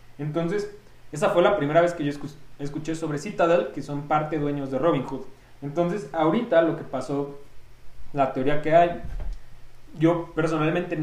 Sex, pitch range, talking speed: male, 140-165 Hz, 160 wpm